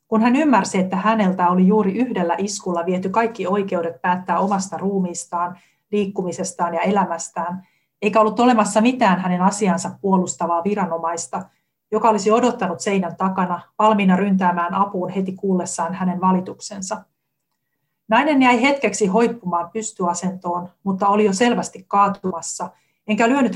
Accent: native